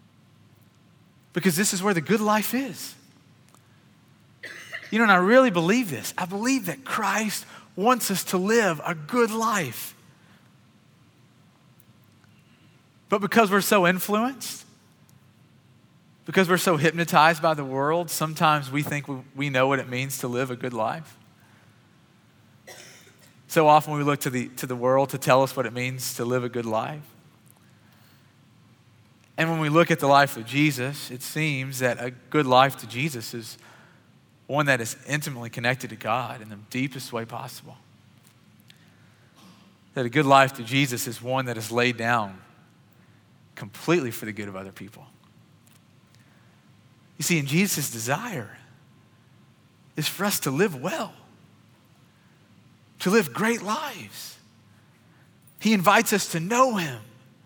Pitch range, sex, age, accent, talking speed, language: 125-175 Hz, male, 40-59, American, 145 wpm, English